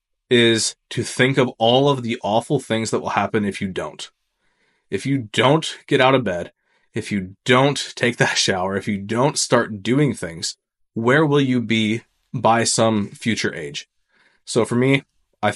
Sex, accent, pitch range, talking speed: male, American, 110-130 Hz, 175 wpm